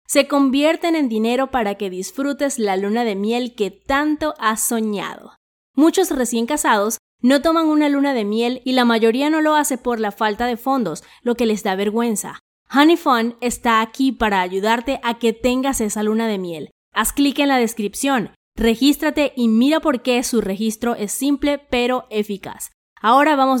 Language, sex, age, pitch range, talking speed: English, female, 20-39, 215-275 Hz, 180 wpm